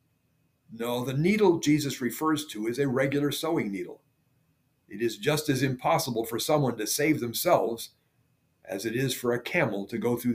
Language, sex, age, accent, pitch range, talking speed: English, male, 50-69, American, 120-150 Hz, 175 wpm